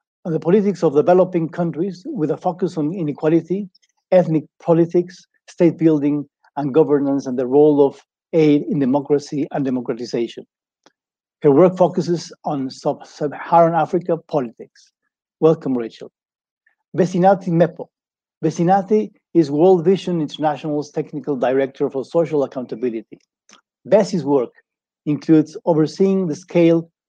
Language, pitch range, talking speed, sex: English, 145-175 Hz, 115 wpm, male